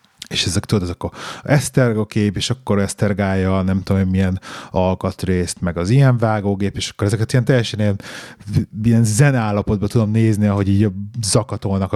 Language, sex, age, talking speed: Hungarian, male, 30-49, 155 wpm